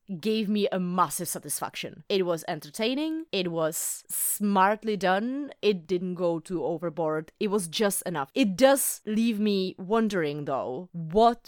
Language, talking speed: English, 145 wpm